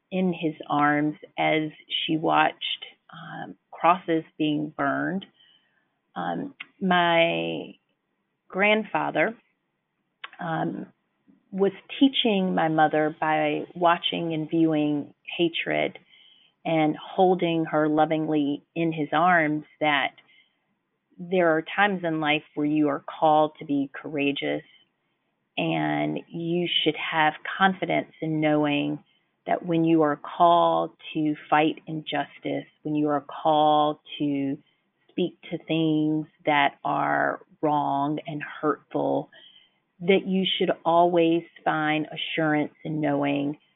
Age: 30-49